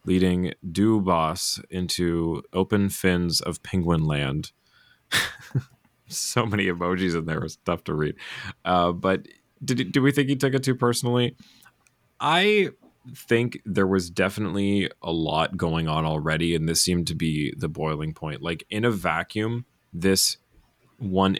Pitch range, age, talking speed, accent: 80-105 Hz, 30-49, 145 wpm, American